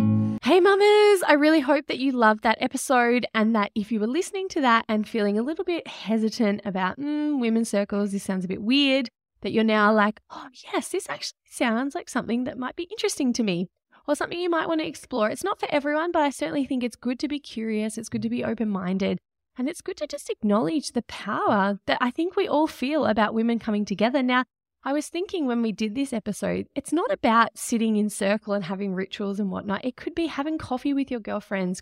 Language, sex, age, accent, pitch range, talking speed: English, female, 20-39, Australian, 210-295 Hz, 230 wpm